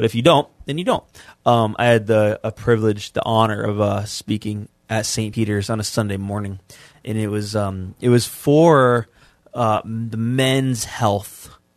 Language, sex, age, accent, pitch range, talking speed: English, male, 20-39, American, 115-140 Hz, 185 wpm